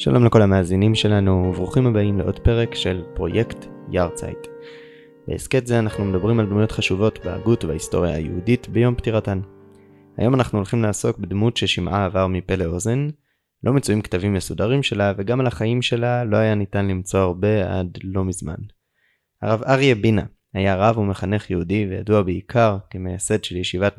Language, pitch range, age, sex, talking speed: Hebrew, 95-115 Hz, 20-39, male, 155 wpm